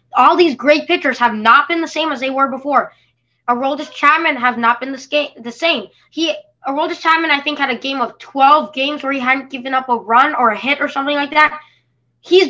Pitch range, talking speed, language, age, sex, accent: 220-290 Hz, 220 wpm, English, 20-39, female, American